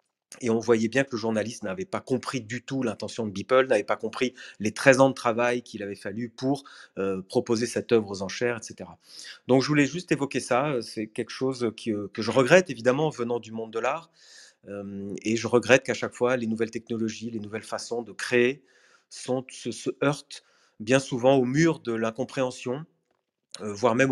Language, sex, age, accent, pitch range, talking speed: French, male, 30-49, French, 110-130 Hz, 200 wpm